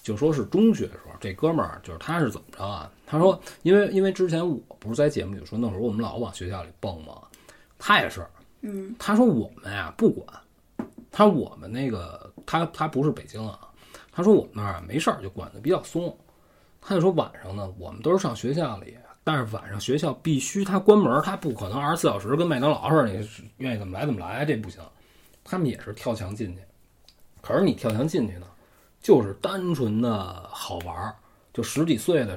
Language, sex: Chinese, male